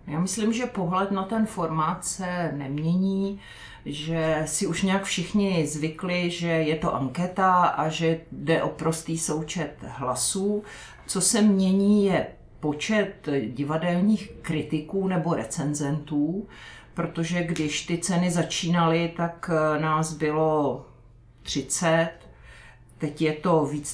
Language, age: Czech, 50-69